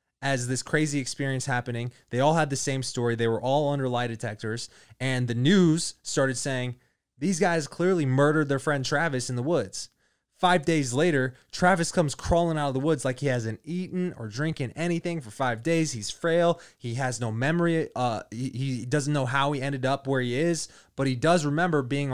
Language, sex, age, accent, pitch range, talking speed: English, male, 20-39, American, 120-155 Hz, 205 wpm